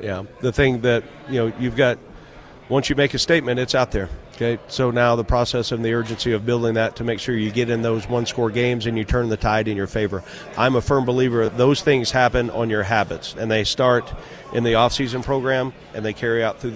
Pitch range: 115-130 Hz